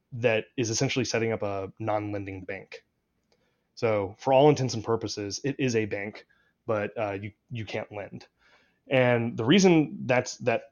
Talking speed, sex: 160 wpm, male